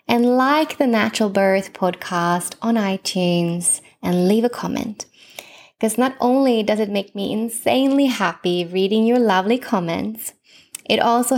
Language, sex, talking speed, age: English, female, 140 wpm, 20-39